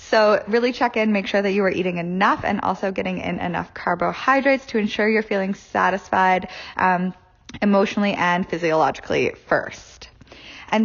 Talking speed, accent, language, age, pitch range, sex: 155 wpm, American, English, 10-29, 185-225 Hz, female